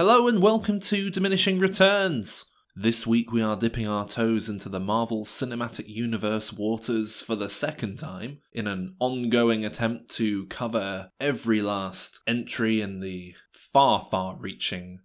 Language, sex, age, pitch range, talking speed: English, male, 20-39, 105-125 Hz, 150 wpm